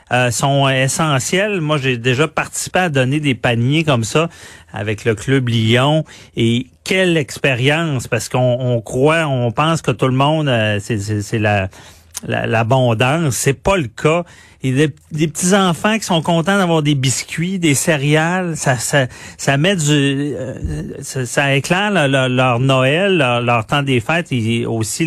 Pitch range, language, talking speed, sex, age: 120-160 Hz, French, 175 wpm, male, 40-59